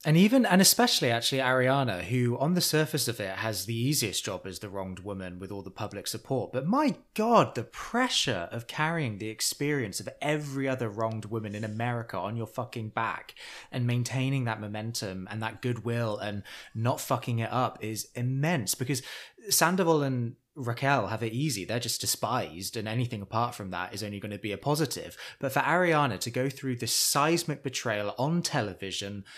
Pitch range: 115-150 Hz